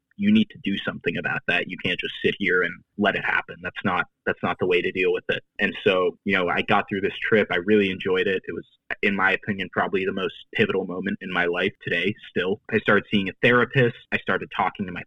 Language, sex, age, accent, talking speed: English, male, 20-39, American, 255 wpm